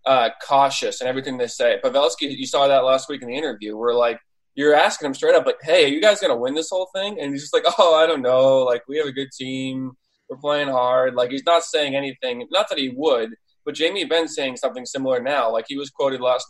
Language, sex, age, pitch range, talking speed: English, male, 20-39, 125-150 Hz, 260 wpm